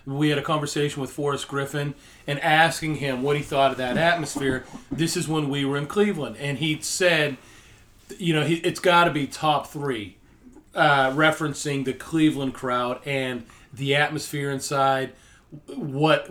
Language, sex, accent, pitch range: English, male, American, 135-160 Hz